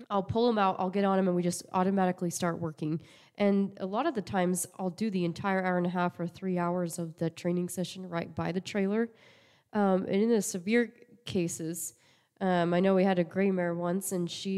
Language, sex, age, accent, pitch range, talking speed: English, female, 20-39, American, 170-190 Hz, 230 wpm